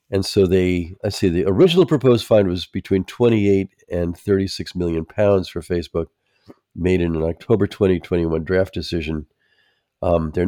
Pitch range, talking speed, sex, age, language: 90-125 Hz, 155 wpm, male, 50-69, English